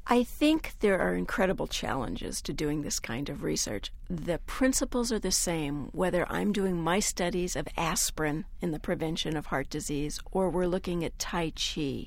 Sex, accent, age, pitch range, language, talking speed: female, American, 60-79, 165-230 Hz, English, 180 wpm